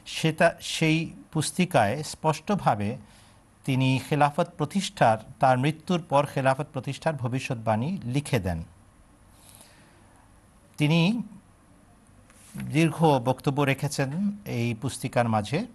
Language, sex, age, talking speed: Bengali, male, 50-69, 70 wpm